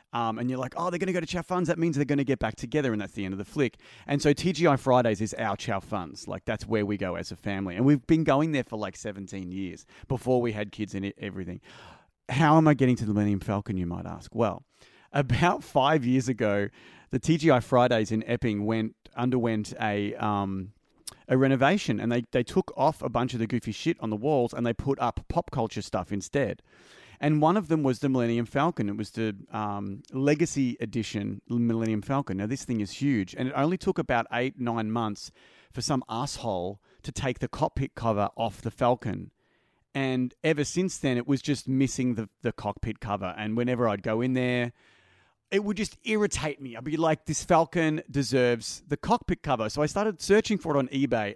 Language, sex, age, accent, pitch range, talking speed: English, male, 30-49, Australian, 105-145 Hz, 220 wpm